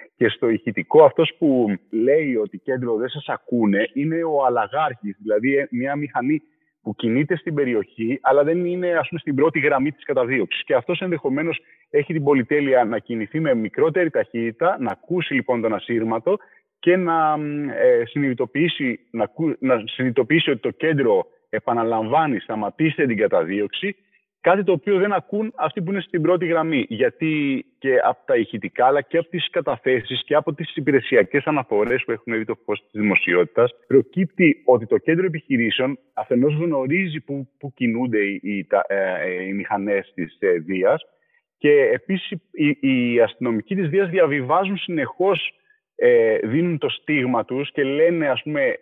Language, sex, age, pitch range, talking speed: Greek, male, 30-49, 130-185 Hz, 160 wpm